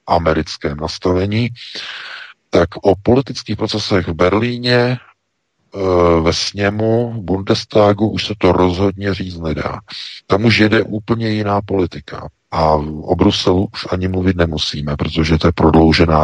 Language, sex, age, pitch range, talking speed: Czech, male, 50-69, 75-95 Hz, 130 wpm